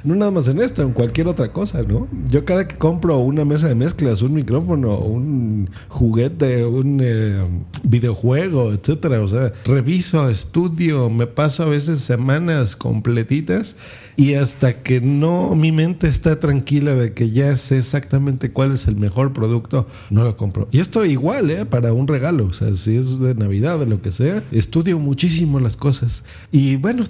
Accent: Mexican